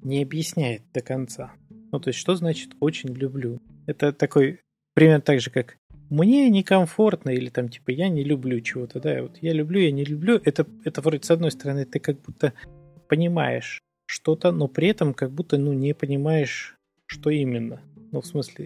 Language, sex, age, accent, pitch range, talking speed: Russian, male, 20-39, native, 130-170 Hz, 185 wpm